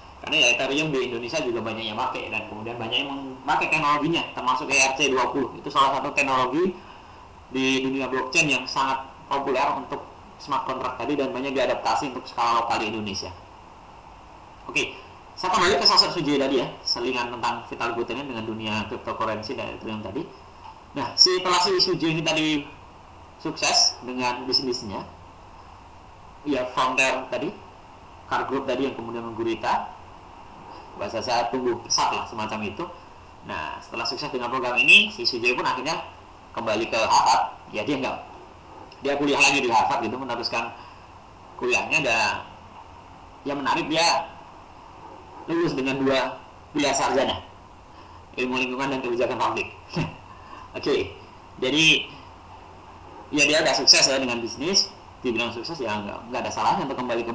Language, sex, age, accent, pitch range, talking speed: Indonesian, male, 20-39, native, 110-140 Hz, 145 wpm